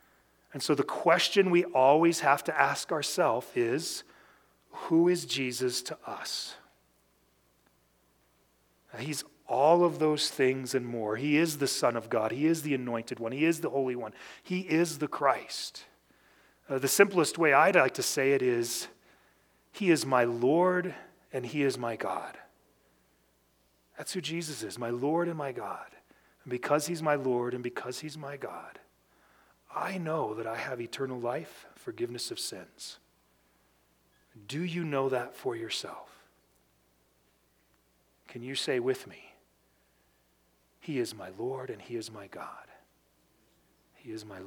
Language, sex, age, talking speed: English, male, 40-59, 155 wpm